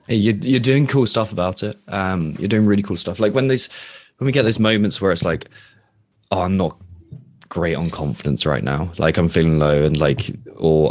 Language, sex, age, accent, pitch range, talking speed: English, male, 20-39, British, 75-95 Hz, 220 wpm